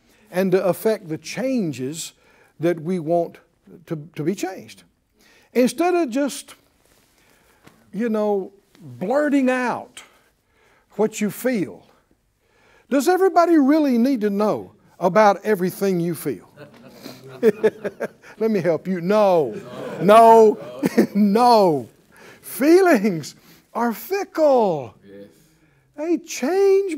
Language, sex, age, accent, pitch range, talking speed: English, male, 60-79, American, 190-295 Hz, 100 wpm